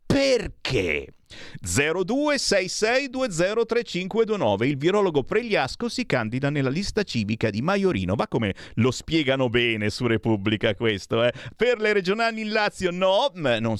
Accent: native